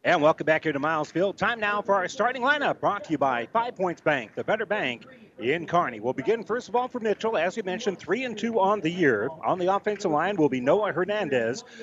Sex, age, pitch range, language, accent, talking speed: male, 40-59, 165-220 Hz, English, American, 250 wpm